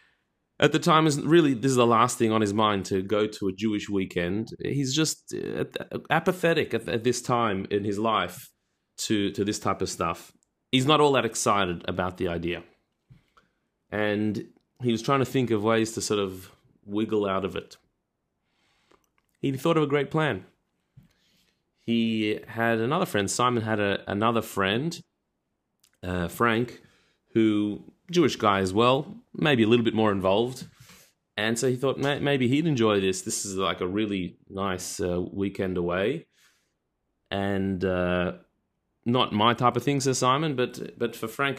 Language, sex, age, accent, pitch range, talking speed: English, male, 30-49, Australian, 100-135 Hz, 165 wpm